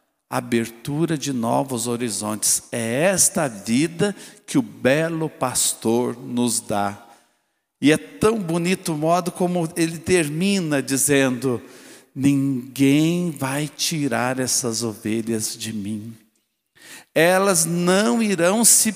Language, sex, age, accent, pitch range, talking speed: Portuguese, male, 60-79, Brazilian, 115-170 Hz, 110 wpm